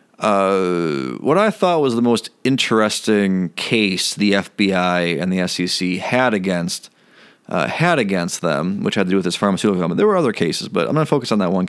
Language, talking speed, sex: English, 205 wpm, male